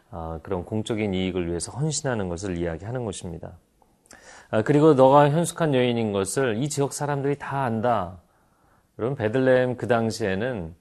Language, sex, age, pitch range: Korean, male, 30-49, 95-135 Hz